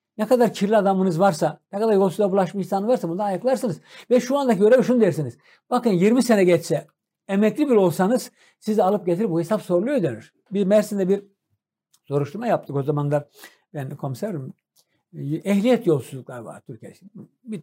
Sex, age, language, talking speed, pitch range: male, 60-79, Turkish, 165 wpm, 155-215 Hz